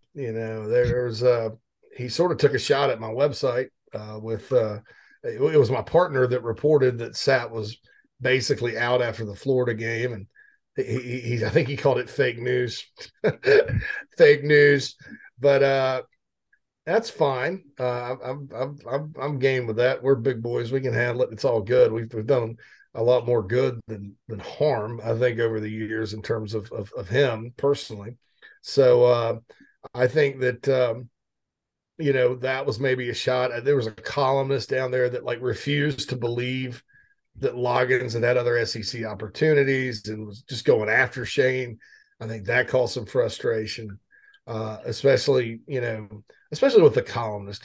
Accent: American